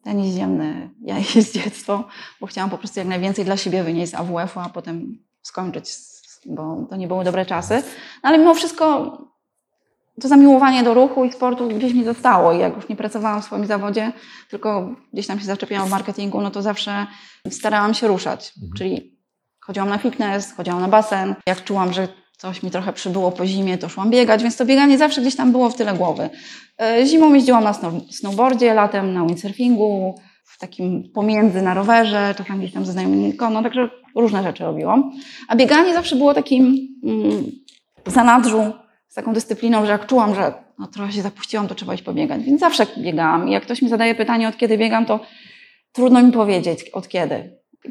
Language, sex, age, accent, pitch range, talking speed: Polish, female, 20-39, native, 195-250 Hz, 190 wpm